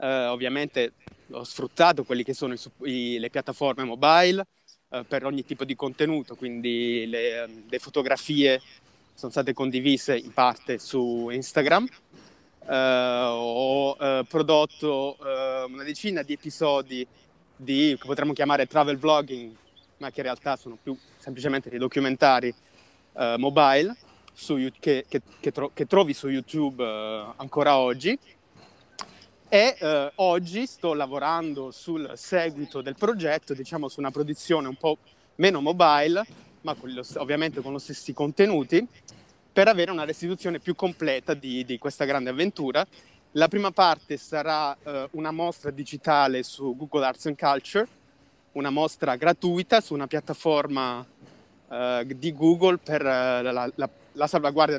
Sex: male